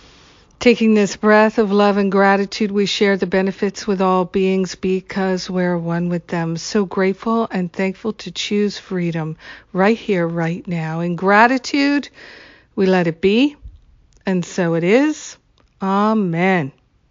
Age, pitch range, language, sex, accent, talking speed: 50-69, 185-220 Hz, English, female, American, 145 wpm